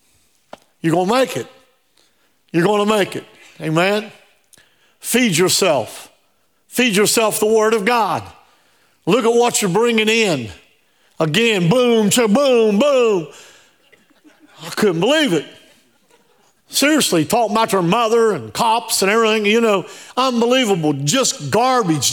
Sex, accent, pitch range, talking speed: male, American, 155-225 Hz, 120 wpm